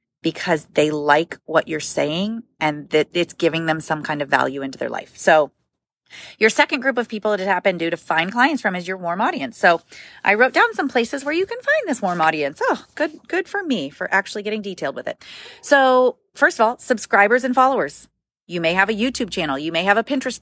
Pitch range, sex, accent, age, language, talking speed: 175-260 Hz, female, American, 30-49, English, 230 wpm